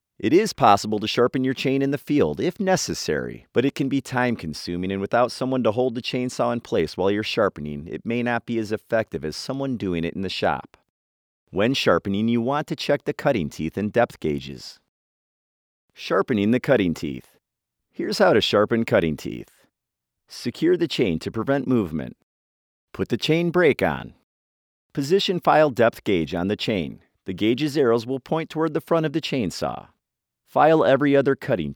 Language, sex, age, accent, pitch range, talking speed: English, male, 40-59, American, 90-140 Hz, 185 wpm